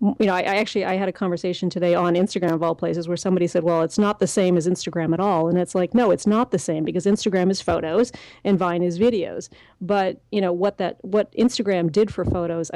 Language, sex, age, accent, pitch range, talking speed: English, female, 40-59, American, 175-200 Hz, 250 wpm